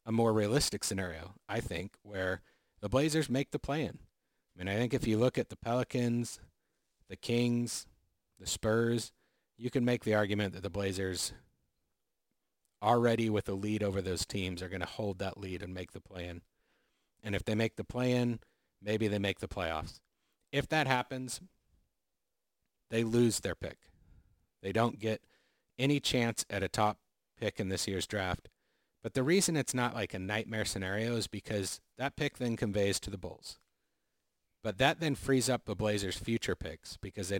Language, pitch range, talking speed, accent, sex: English, 95-115 Hz, 180 wpm, American, male